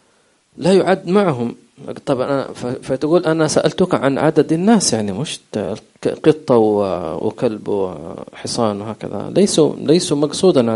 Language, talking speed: English, 100 wpm